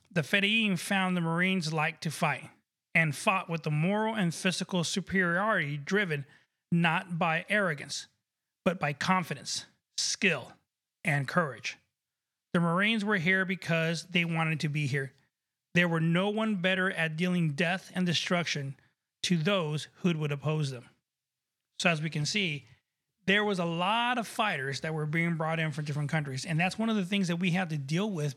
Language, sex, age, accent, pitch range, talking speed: English, male, 30-49, American, 150-190 Hz, 175 wpm